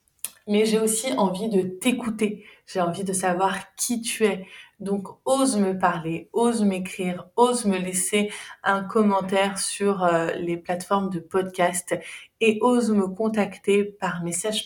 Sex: female